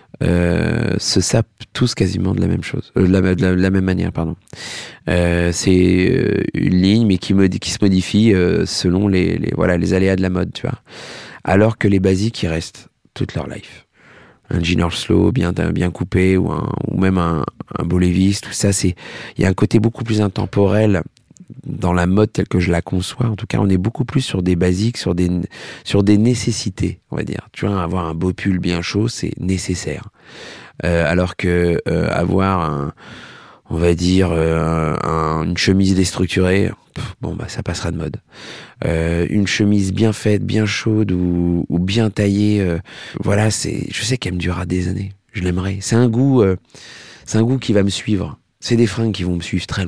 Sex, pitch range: male, 90-105 Hz